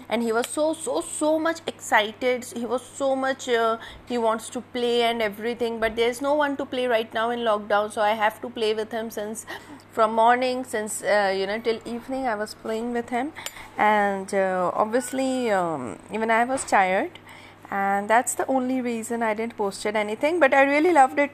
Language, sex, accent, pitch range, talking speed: Hindi, female, native, 215-255 Hz, 200 wpm